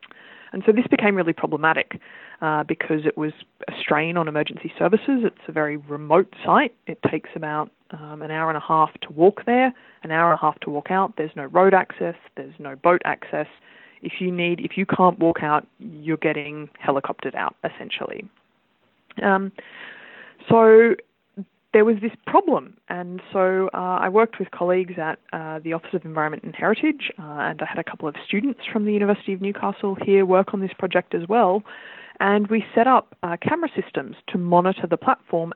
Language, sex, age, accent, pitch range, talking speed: English, female, 20-39, Australian, 160-210 Hz, 190 wpm